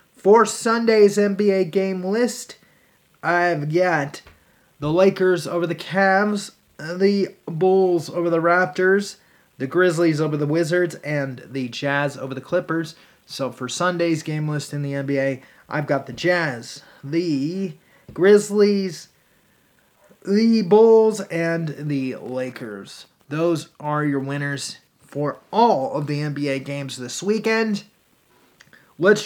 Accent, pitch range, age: American, 145-195 Hz, 30-49